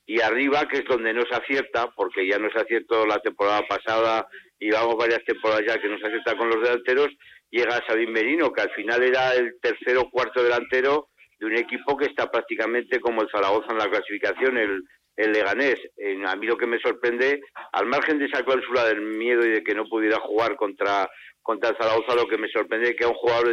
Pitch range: 110-145 Hz